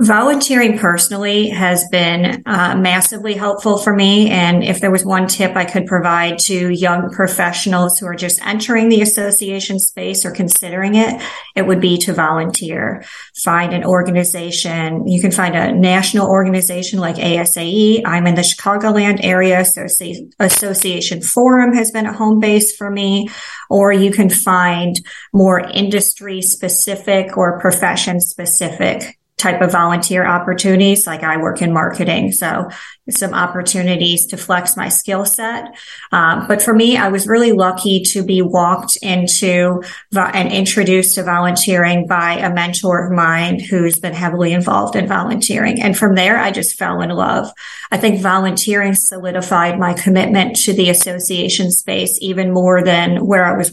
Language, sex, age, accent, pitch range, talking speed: English, female, 30-49, American, 180-205 Hz, 155 wpm